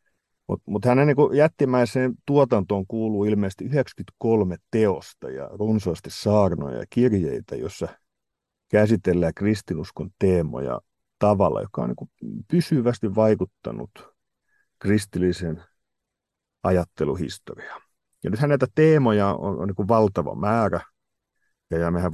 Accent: native